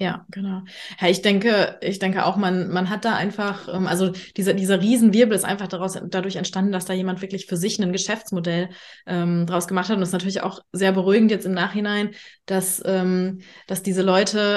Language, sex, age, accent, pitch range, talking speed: German, female, 20-39, German, 180-195 Hz, 200 wpm